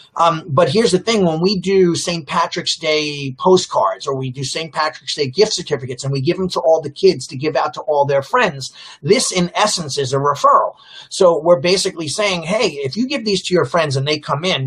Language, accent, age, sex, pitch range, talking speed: English, American, 40-59, male, 145-185 Hz, 235 wpm